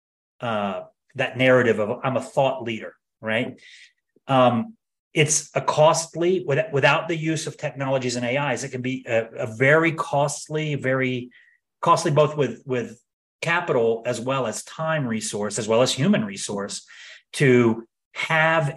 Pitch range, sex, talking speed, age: 120-160 Hz, male, 145 wpm, 30-49